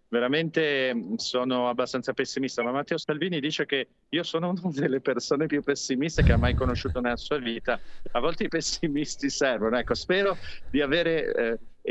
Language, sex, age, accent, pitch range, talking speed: Italian, male, 40-59, native, 115-140 Hz, 165 wpm